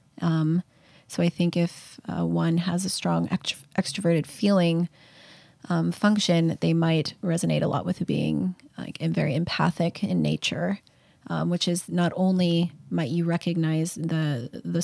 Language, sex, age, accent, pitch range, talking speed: English, female, 30-49, American, 155-175 Hz, 145 wpm